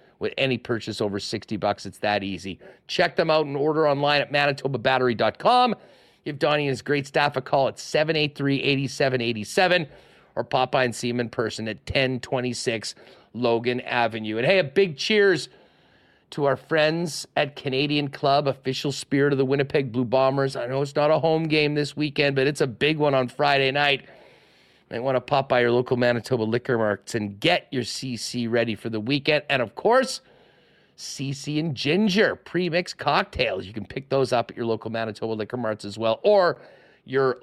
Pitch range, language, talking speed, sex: 120-150 Hz, English, 185 wpm, male